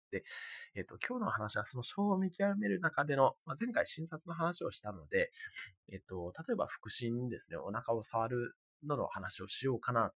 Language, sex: Japanese, male